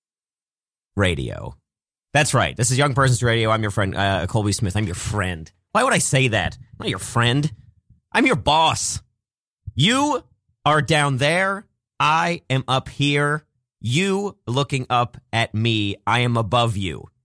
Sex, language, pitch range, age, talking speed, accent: male, English, 100-145 Hz, 30-49, 160 wpm, American